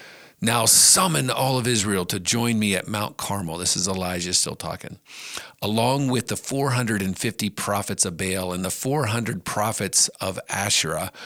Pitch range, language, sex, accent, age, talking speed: 95-130 Hz, English, male, American, 50-69, 155 wpm